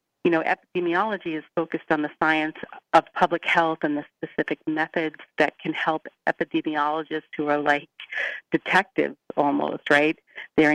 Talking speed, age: 145 wpm, 40-59